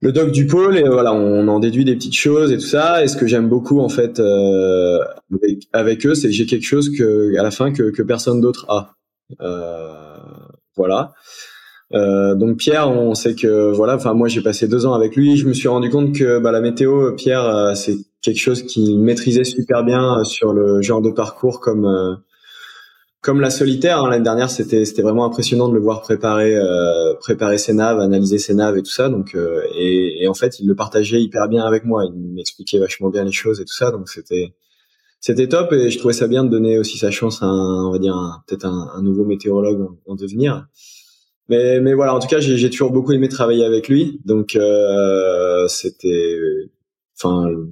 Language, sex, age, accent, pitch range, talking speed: French, male, 20-39, French, 100-125 Hz, 220 wpm